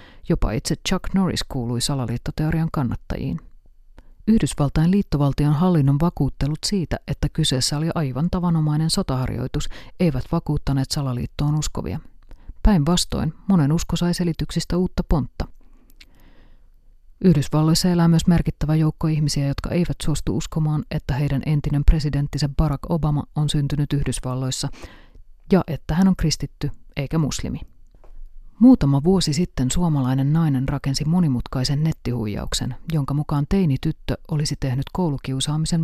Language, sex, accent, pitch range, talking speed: Finnish, female, native, 130-165 Hz, 115 wpm